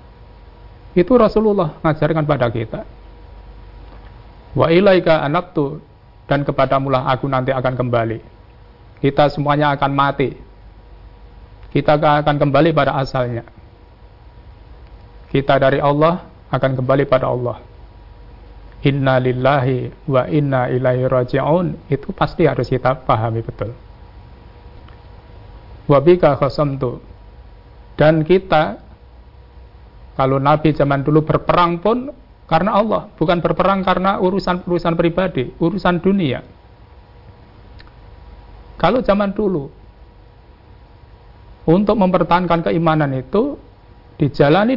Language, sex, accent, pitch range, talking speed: Indonesian, male, native, 120-170 Hz, 95 wpm